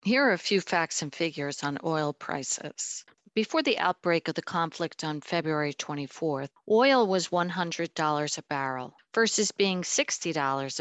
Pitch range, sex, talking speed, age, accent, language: 150-190 Hz, female, 150 wpm, 50-69, American, English